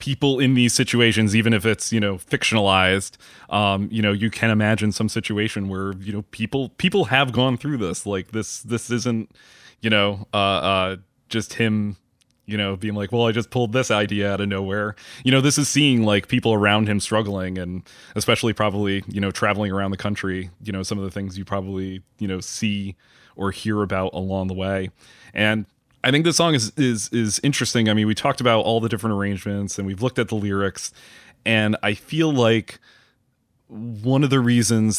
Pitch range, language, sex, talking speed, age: 100-115 Hz, English, male, 200 wpm, 20-39